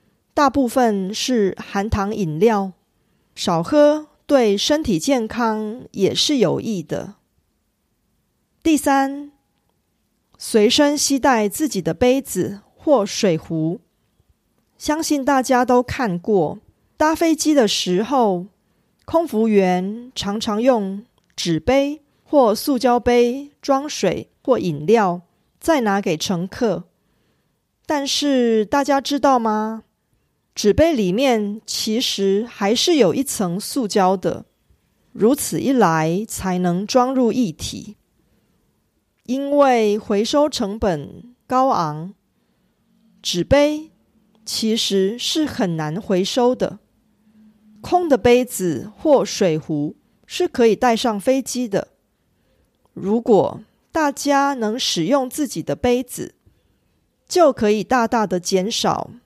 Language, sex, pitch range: Korean, female, 200-275 Hz